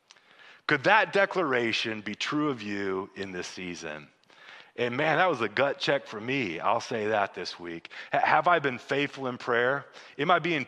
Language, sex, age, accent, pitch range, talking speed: English, male, 30-49, American, 110-165 Hz, 185 wpm